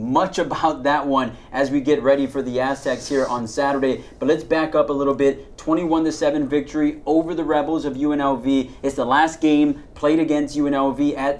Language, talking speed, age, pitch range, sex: English, 190 wpm, 30-49, 130-155 Hz, male